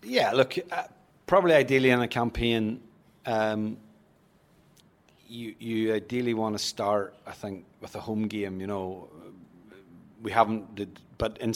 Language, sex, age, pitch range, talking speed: English, male, 30-49, 105-115 Hz, 145 wpm